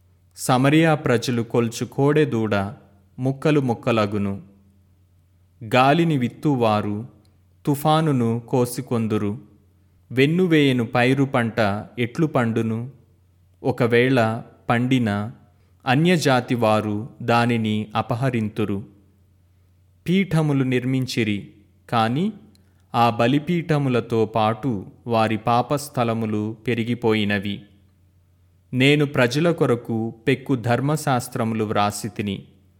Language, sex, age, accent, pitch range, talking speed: Telugu, male, 30-49, native, 105-135 Hz, 60 wpm